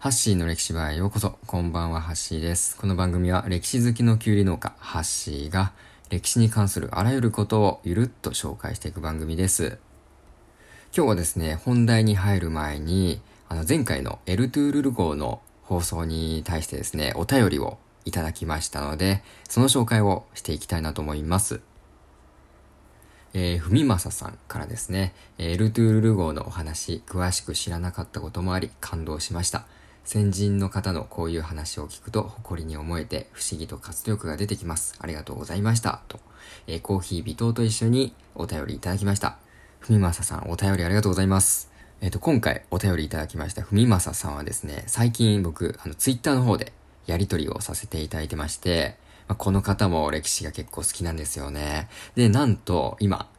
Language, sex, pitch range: Japanese, male, 80-105 Hz